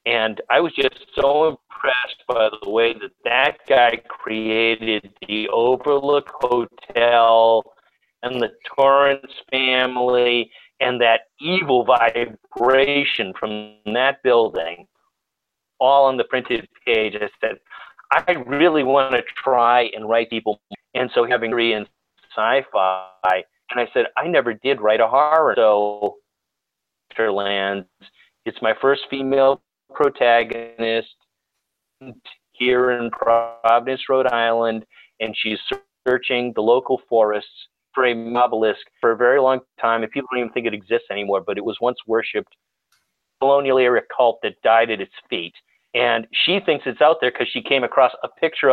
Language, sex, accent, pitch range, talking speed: English, male, American, 110-135 Hz, 145 wpm